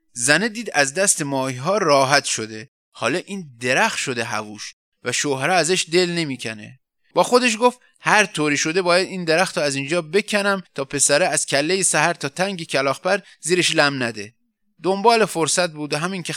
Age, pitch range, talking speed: 30-49, 135-190 Hz, 170 wpm